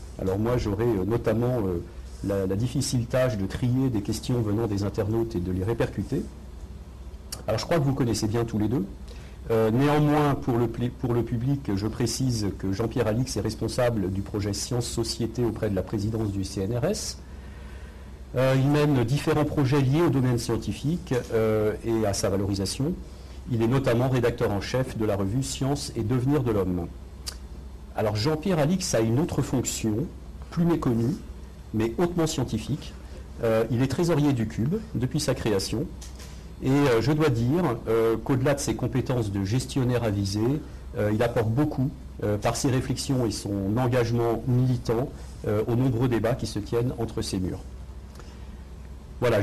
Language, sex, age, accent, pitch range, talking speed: French, male, 50-69, French, 100-130 Hz, 165 wpm